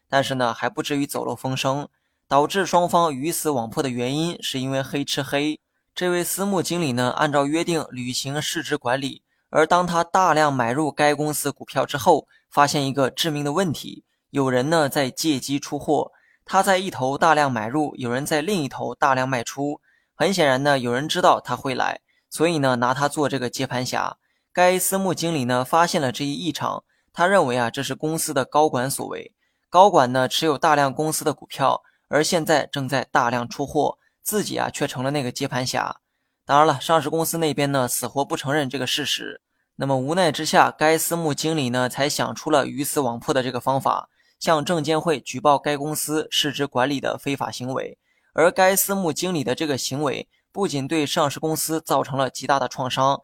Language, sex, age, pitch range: Chinese, male, 20-39, 130-160 Hz